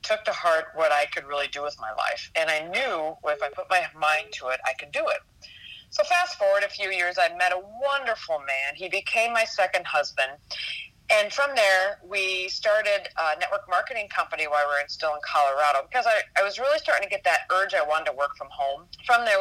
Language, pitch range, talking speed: English, 145-195 Hz, 230 wpm